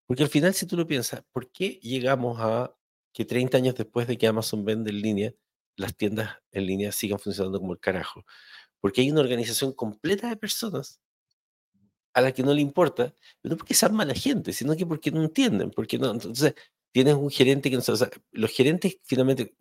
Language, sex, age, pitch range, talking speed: Spanish, male, 50-69, 110-135 Hz, 200 wpm